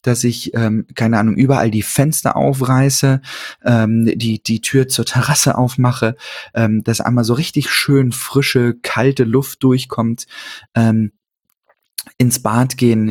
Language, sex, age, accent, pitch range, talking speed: German, male, 20-39, German, 110-130 Hz, 120 wpm